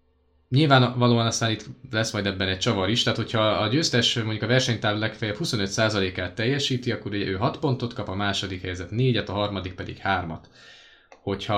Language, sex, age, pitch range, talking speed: Hungarian, male, 20-39, 105-125 Hz, 175 wpm